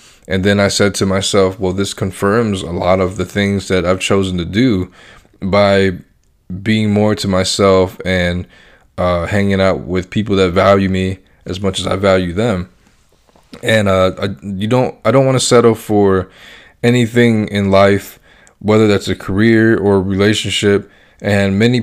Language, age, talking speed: English, 20-39, 165 wpm